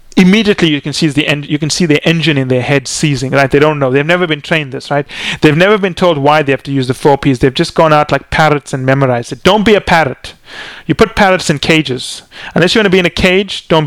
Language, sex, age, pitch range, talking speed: English, male, 30-49, 140-175 Hz, 275 wpm